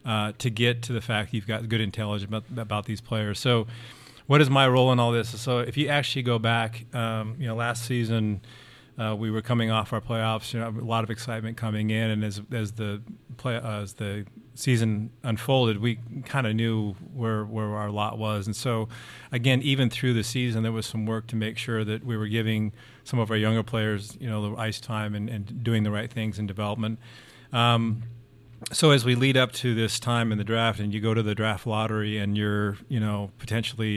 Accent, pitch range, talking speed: American, 105-120 Hz, 225 wpm